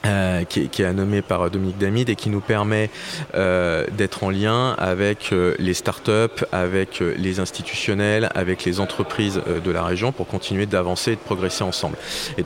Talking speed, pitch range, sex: 190 wpm, 90-100 Hz, male